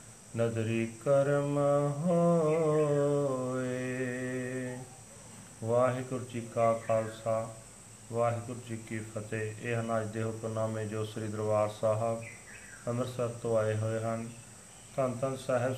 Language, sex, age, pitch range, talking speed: Punjabi, male, 40-59, 110-125 Hz, 100 wpm